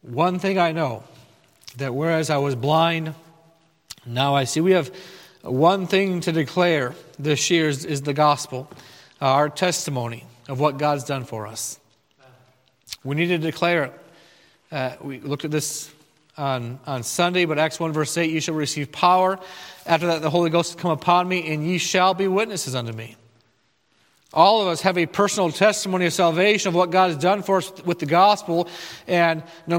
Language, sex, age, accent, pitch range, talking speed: English, male, 40-59, American, 150-185 Hz, 185 wpm